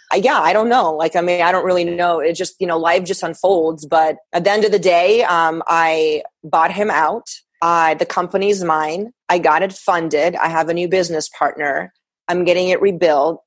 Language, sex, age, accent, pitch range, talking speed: English, female, 30-49, American, 155-185 Hz, 215 wpm